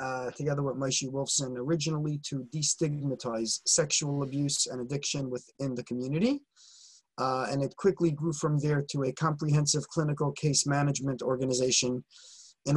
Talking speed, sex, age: 140 wpm, male, 30-49